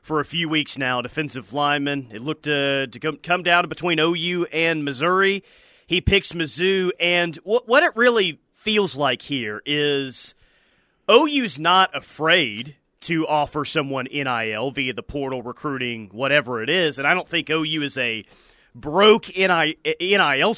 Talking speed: 150 wpm